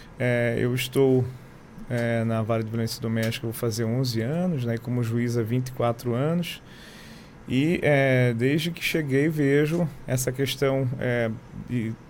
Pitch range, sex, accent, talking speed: 125-150 Hz, male, Brazilian, 125 wpm